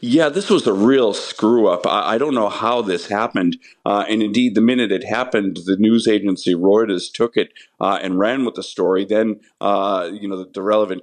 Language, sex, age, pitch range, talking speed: English, male, 50-69, 95-120 Hz, 220 wpm